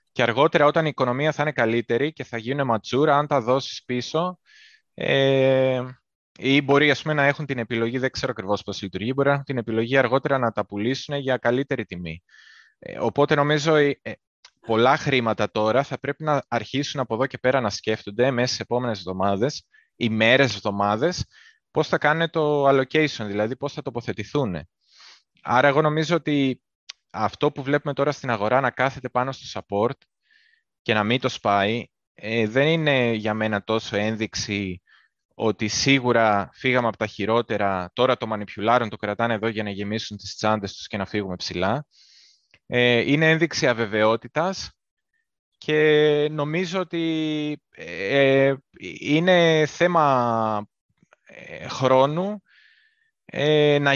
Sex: male